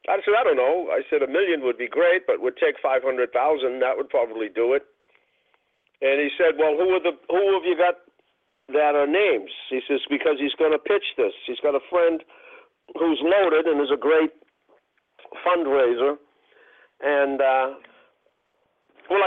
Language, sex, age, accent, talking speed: English, male, 50-69, American, 180 wpm